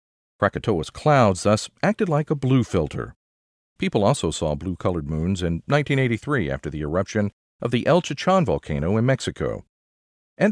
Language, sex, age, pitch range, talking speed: English, male, 50-69, 85-135 Hz, 150 wpm